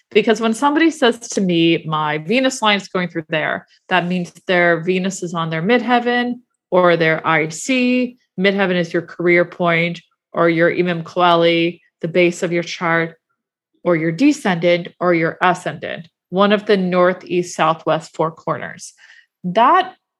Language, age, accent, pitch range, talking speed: English, 30-49, American, 175-220 Hz, 150 wpm